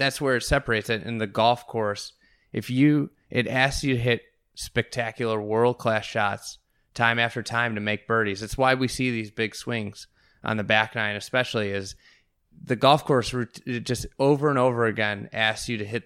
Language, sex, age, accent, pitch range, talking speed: English, male, 20-39, American, 105-120 Hz, 190 wpm